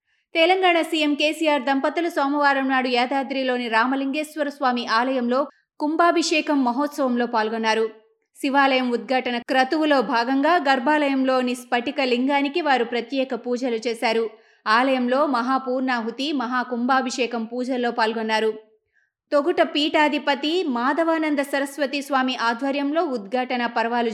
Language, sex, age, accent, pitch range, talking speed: Telugu, female, 20-39, native, 245-305 Hz, 90 wpm